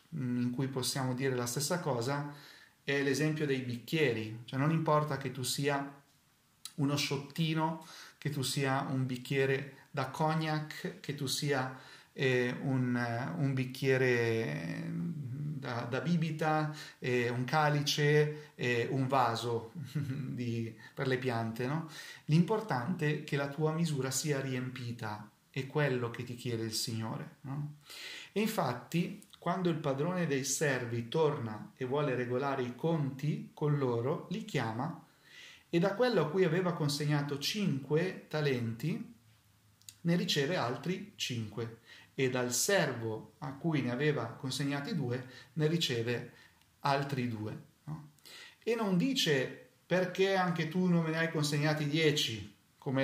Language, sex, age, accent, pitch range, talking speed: Italian, male, 40-59, native, 125-155 Hz, 130 wpm